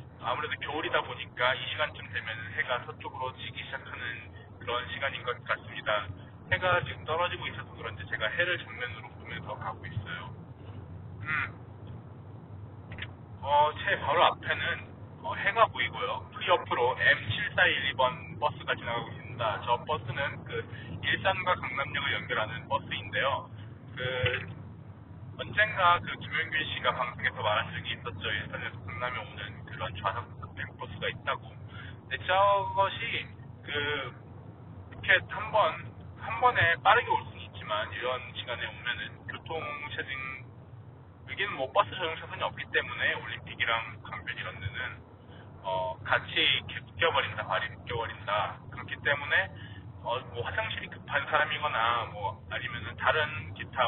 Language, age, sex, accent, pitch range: Korean, 30-49, male, native, 105-130 Hz